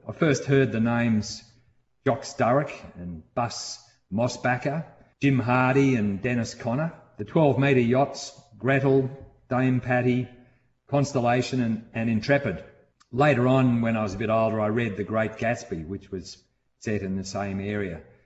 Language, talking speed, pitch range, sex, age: English, 150 wpm, 105-130 Hz, male, 40-59